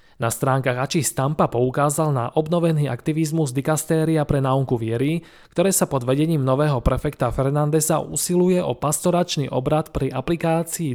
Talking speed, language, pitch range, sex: 135 wpm, Slovak, 125-160 Hz, male